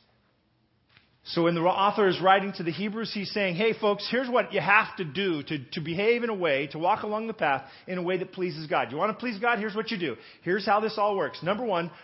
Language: English